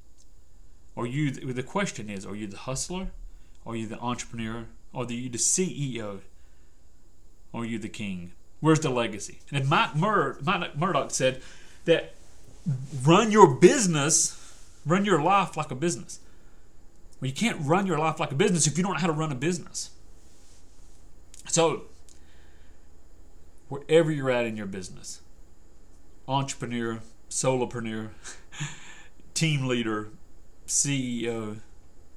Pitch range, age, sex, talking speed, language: 90-135 Hz, 30-49, male, 130 wpm, English